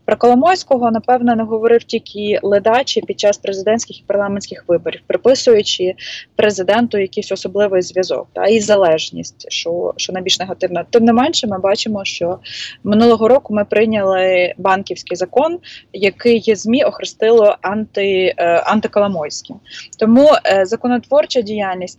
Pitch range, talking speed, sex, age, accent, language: 195-240 Hz, 130 wpm, female, 20-39, native, Ukrainian